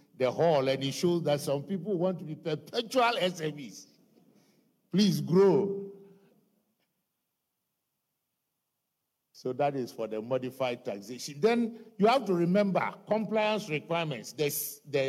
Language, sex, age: English, male, 60-79